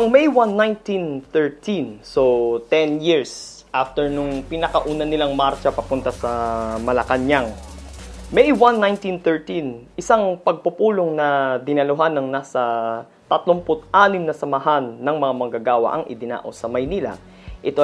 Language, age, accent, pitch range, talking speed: Filipino, 20-39, native, 130-180 Hz, 115 wpm